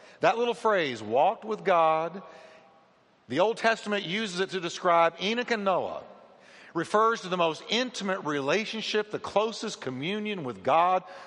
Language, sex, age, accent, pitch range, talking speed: English, male, 50-69, American, 160-215 Hz, 145 wpm